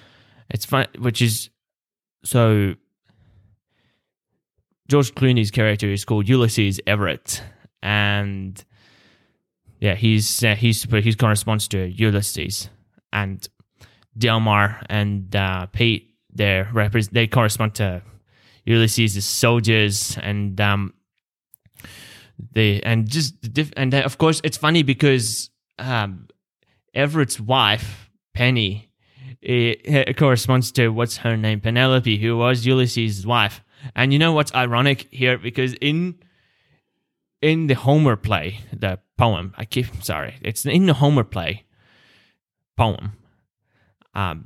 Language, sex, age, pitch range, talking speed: English, male, 10-29, 105-125 Hz, 115 wpm